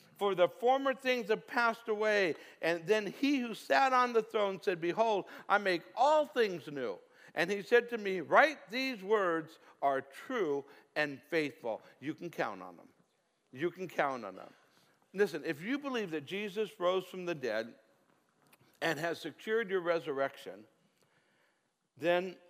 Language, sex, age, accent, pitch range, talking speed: English, male, 60-79, American, 135-215 Hz, 160 wpm